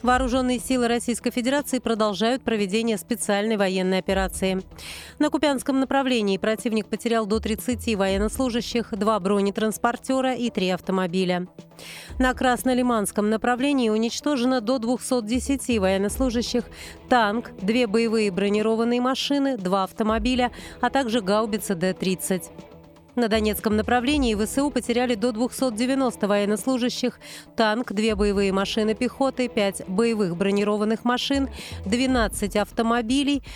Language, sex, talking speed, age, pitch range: Russian, female, 105 wpm, 30-49, 205-255 Hz